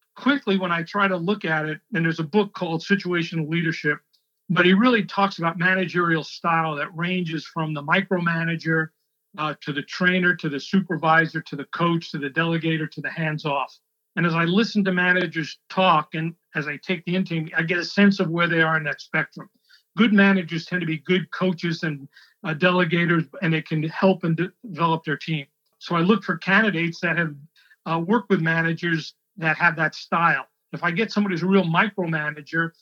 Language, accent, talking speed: English, American, 195 wpm